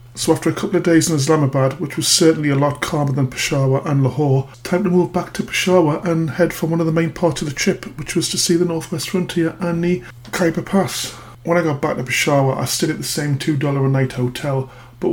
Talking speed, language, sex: 260 wpm, English, male